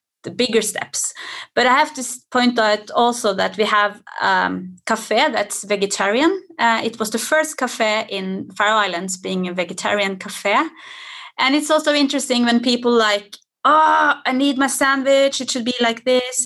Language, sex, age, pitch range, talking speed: English, female, 30-49, 215-285 Hz, 170 wpm